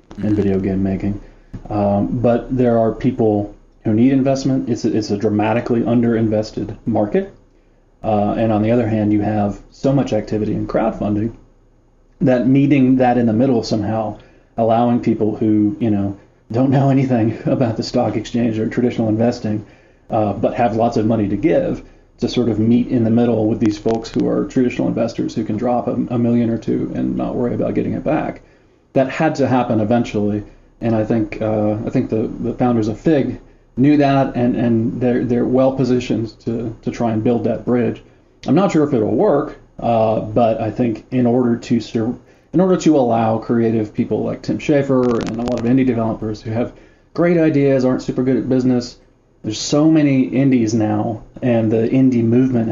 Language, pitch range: English, 110-125 Hz